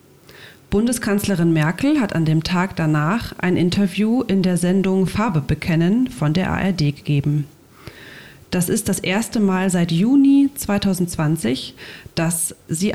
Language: German